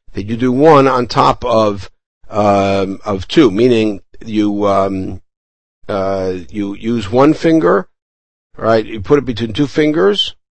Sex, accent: male, American